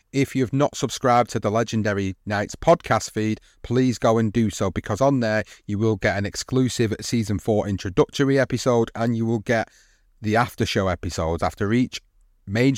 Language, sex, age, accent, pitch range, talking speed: English, male, 30-49, British, 105-130 Hz, 180 wpm